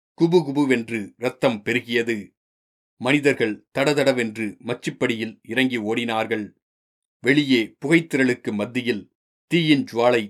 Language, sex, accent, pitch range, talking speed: Tamil, male, native, 110-135 Hz, 75 wpm